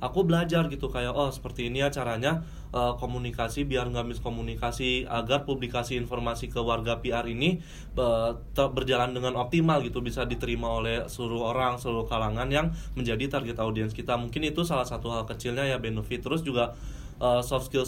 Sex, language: male, Indonesian